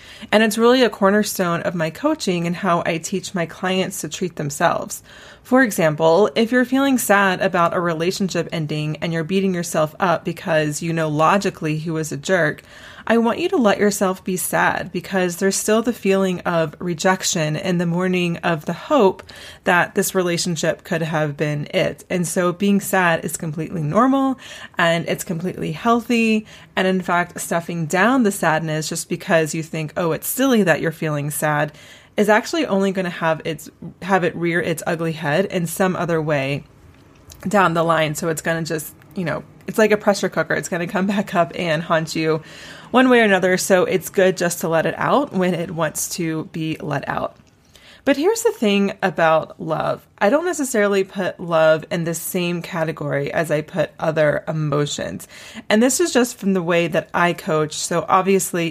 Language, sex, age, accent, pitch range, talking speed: English, female, 20-39, American, 160-195 Hz, 190 wpm